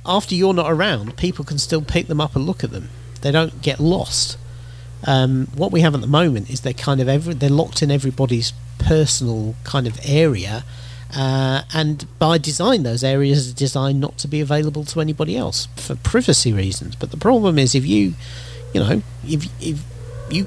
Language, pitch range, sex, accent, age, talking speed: English, 120-150 Hz, male, British, 40-59, 195 wpm